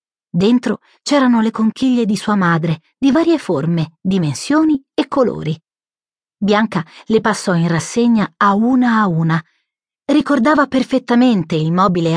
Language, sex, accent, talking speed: Italian, female, native, 130 wpm